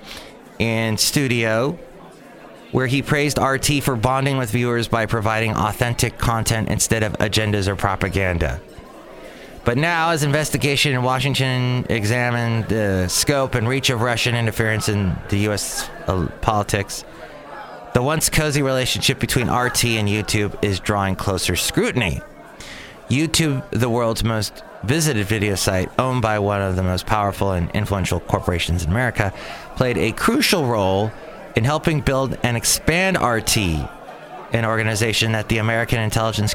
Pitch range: 100-130 Hz